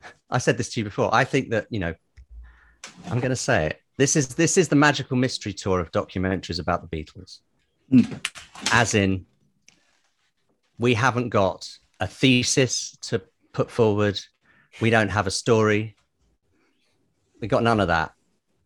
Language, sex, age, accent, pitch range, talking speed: English, male, 40-59, British, 90-115 Hz, 160 wpm